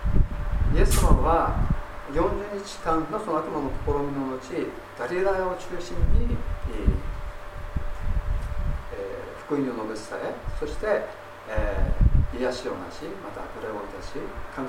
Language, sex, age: Japanese, male, 50-69